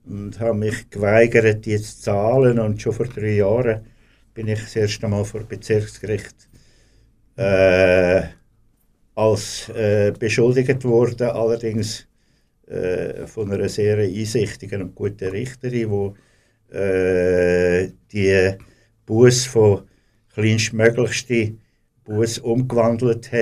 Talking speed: 110 wpm